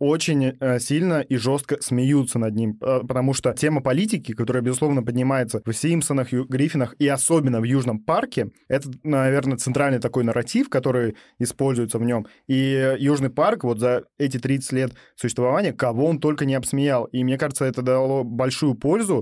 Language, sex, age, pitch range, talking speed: Russian, male, 20-39, 125-145 Hz, 160 wpm